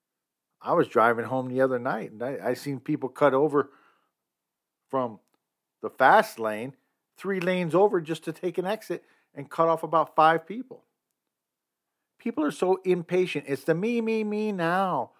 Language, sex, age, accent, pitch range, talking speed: English, male, 50-69, American, 125-185 Hz, 165 wpm